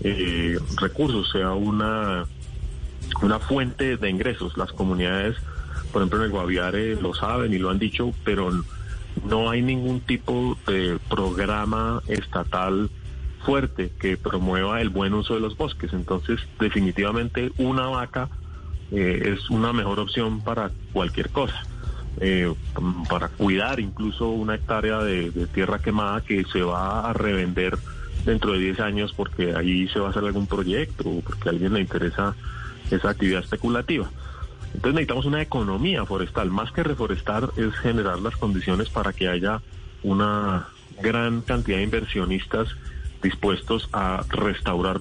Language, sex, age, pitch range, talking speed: Spanish, male, 30-49, 90-110 Hz, 145 wpm